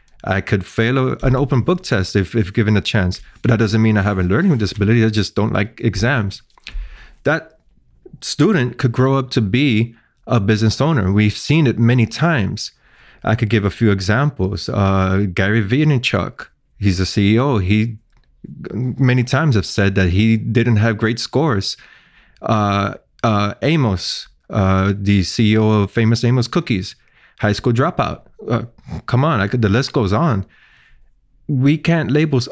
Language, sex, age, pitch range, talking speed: English, male, 30-49, 105-130 Hz, 165 wpm